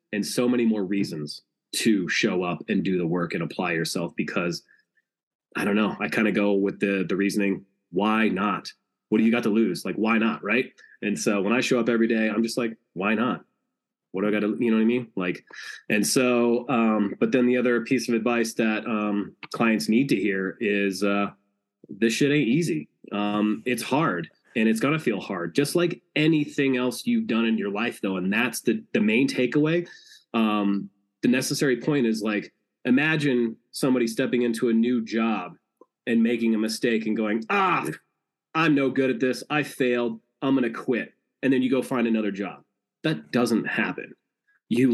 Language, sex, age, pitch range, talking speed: English, male, 20-39, 105-125 Hz, 205 wpm